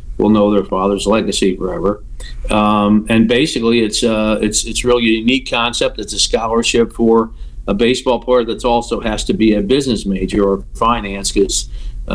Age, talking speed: 50-69, 180 wpm